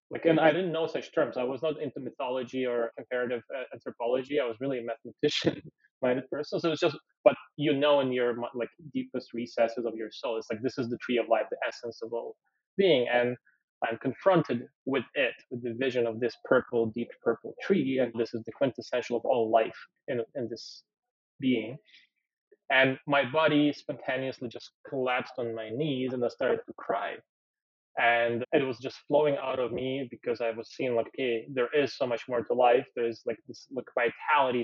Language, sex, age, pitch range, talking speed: English, male, 20-39, 120-140 Hz, 200 wpm